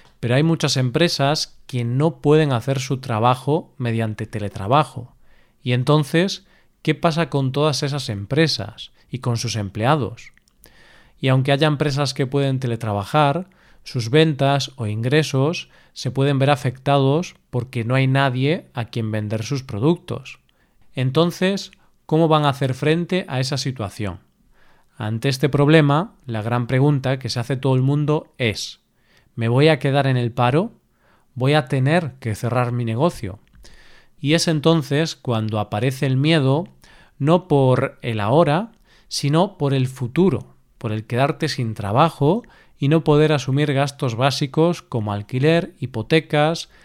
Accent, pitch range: Spanish, 125-155 Hz